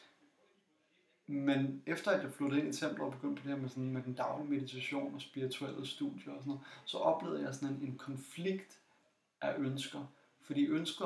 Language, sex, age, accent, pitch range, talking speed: Danish, male, 30-49, native, 130-145 Hz, 185 wpm